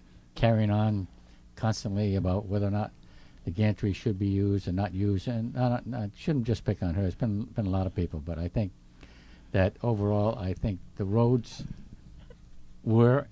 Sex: male